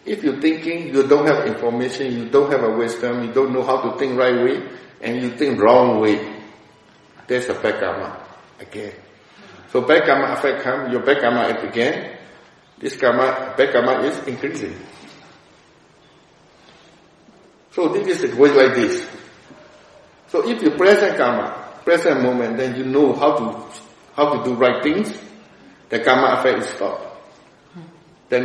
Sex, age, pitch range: male, 60-79, 120-155 Hz